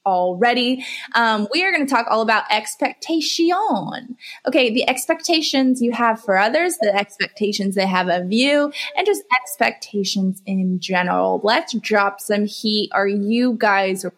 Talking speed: 150 wpm